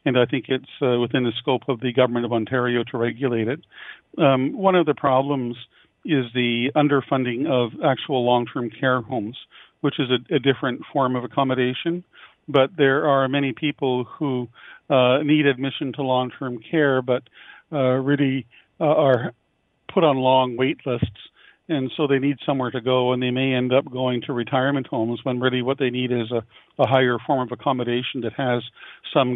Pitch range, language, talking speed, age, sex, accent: 125-140 Hz, English, 185 wpm, 50-69, male, American